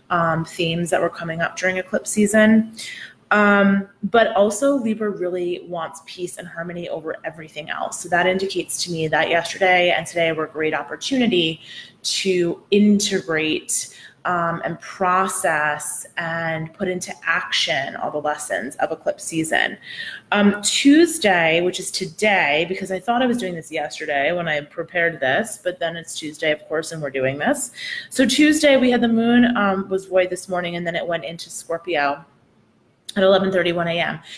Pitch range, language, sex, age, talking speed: 165-215 Hz, English, female, 20-39, 165 wpm